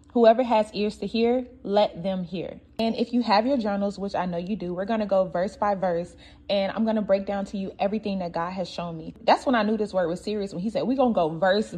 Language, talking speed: English, 285 wpm